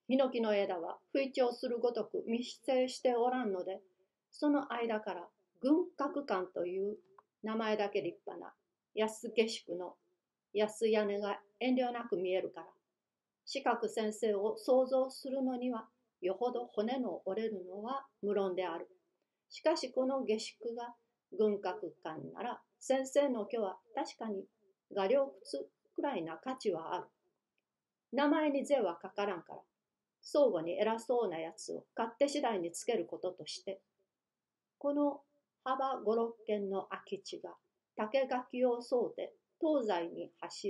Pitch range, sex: 205-280 Hz, female